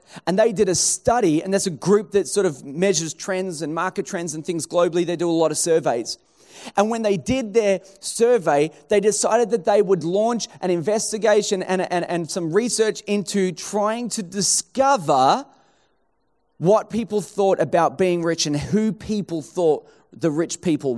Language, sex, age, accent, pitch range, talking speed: English, male, 30-49, Australian, 165-215 Hz, 175 wpm